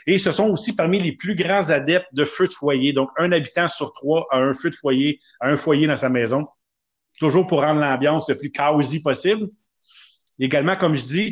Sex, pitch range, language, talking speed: male, 145-175 Hz, French, 215 wpm